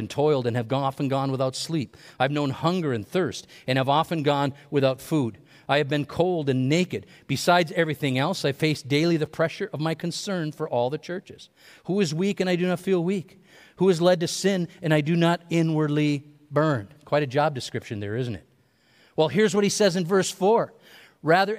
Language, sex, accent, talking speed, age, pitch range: English, male, American, 215 wpm, 50-69, 145-190 Hz